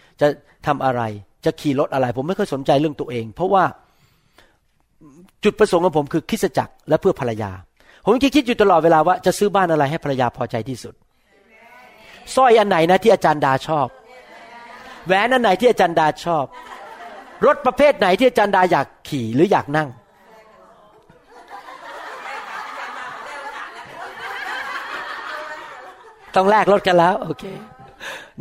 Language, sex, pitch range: Thai, male, 145-245 Hz